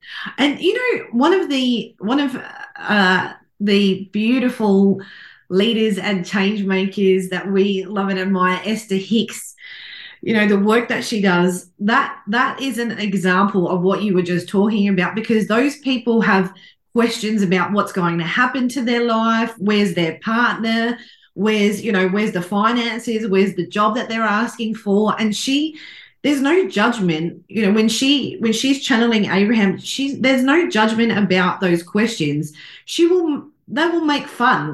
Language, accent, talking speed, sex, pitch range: English, Australian, 165 wpm, female, 190-235 Hz